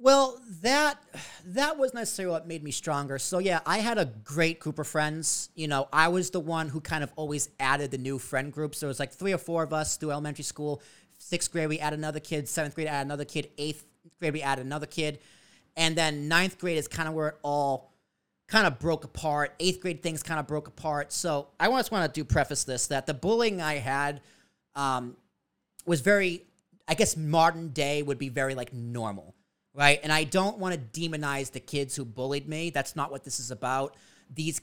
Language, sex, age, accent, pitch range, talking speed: English, male, 30-49, American, 145-175 Hz, 220 wpm